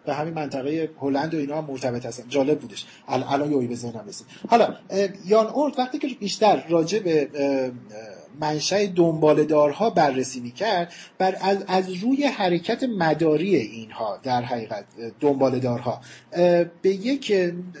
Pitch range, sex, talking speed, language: 150-215 Hz, male, 120 wpm, Persian